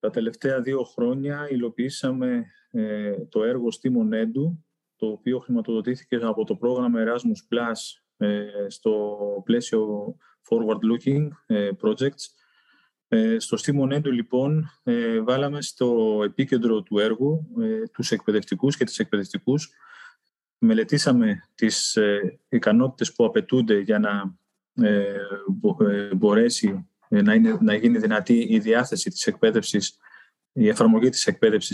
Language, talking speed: Greek, 125 wpm